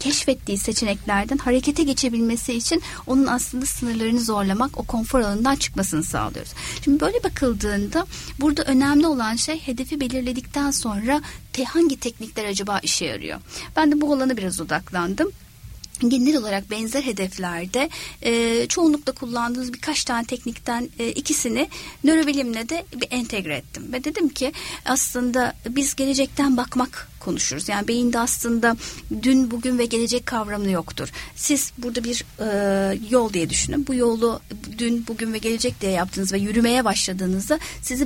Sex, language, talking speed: female, Turkish, 135 wpm